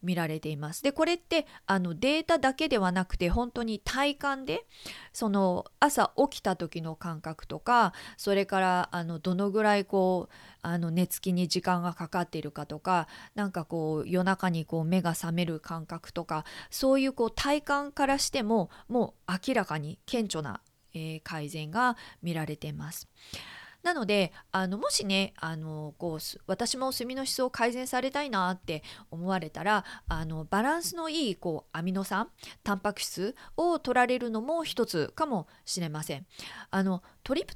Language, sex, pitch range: Japanese, female, 170-250 Hz